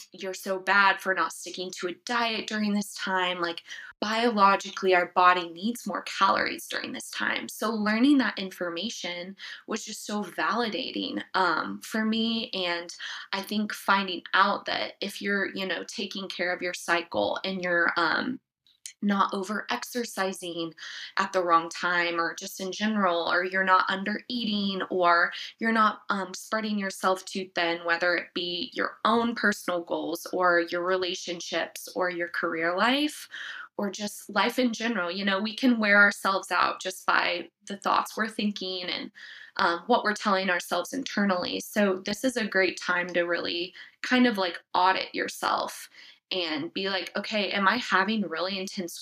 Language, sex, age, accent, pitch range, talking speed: English, female, 20-39, American, 175-210 Hz, 165 wpm